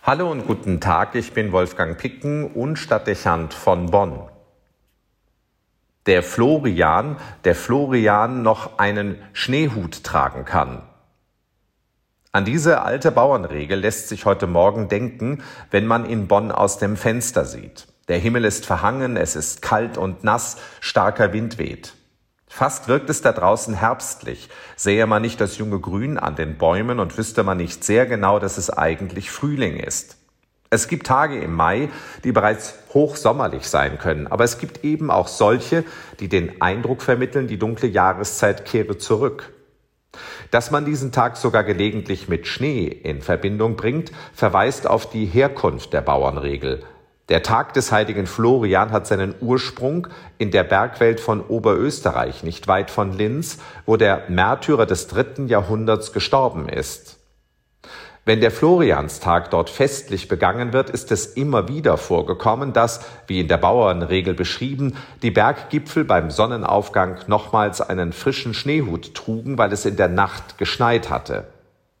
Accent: German